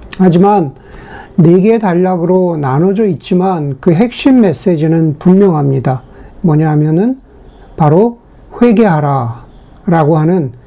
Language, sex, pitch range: Korean, male, 165-210 Hz